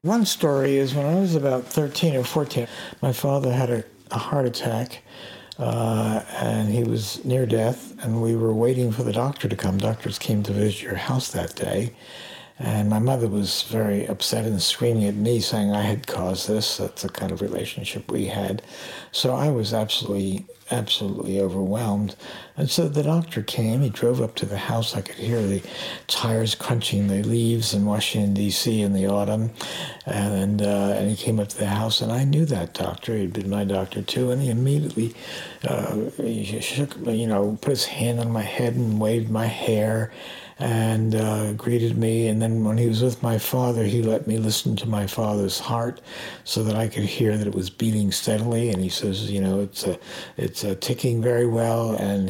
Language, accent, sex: English, American, male